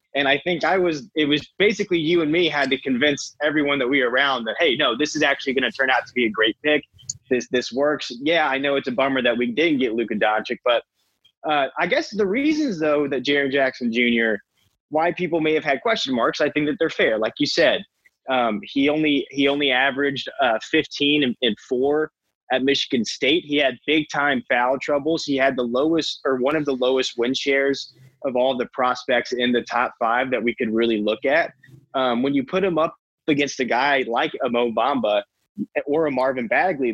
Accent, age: American, 20-39